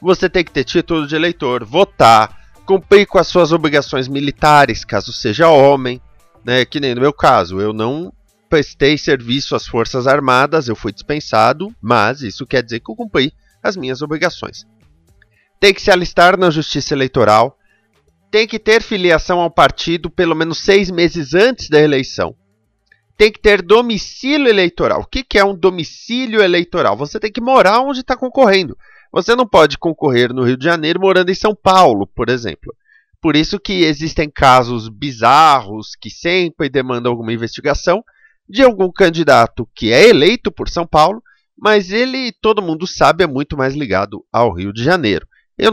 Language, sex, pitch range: Portuguese, male, 130-200 Hz